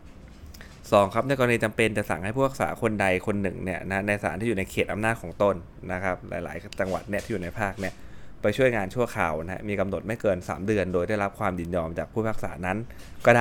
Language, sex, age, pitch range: Thai, male, 20-39, 90-110 Hz